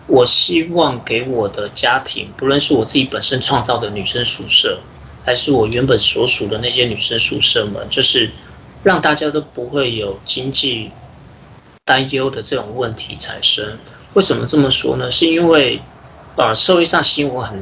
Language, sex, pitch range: Chinese, male, 110-150 Hz